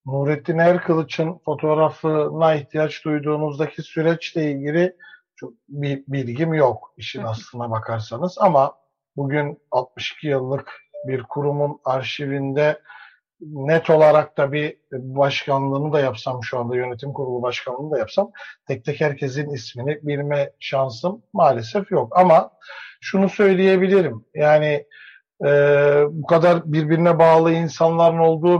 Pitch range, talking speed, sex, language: 145-190 Hz, 110 wpm, male, Turkish